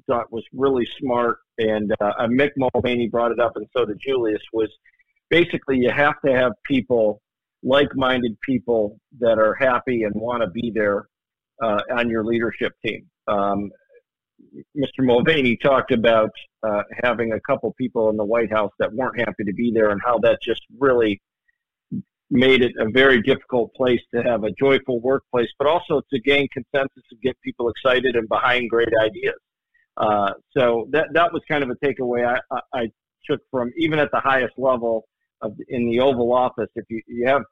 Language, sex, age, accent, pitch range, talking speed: English, male, 50-69, American, 110-135 Hz, 180 wpm